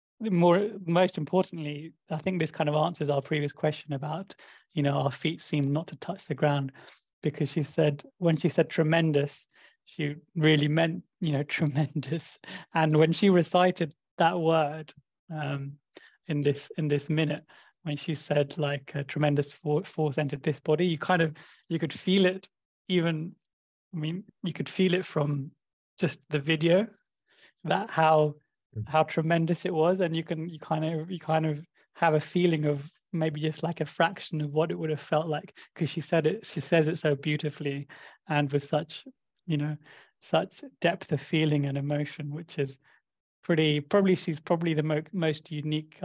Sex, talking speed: male, 180 wpm